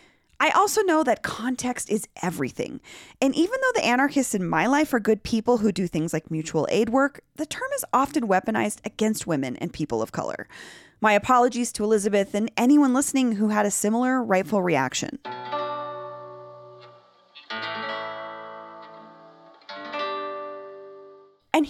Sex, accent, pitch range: female, American, 175-290 Hz